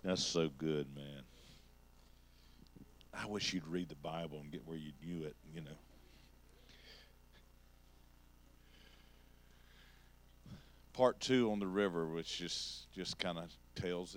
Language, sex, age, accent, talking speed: English, male, 50-69, American, 125 wpm